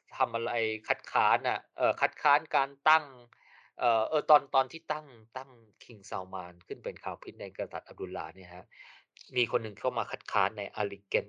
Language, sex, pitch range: Thai, male, 105-145 Hz